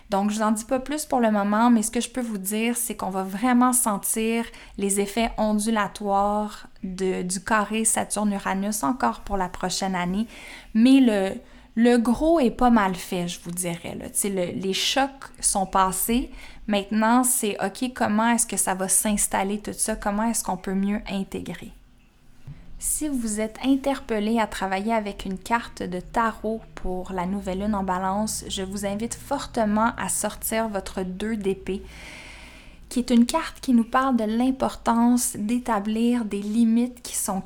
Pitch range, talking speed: 195-235 Hz, 170 wpm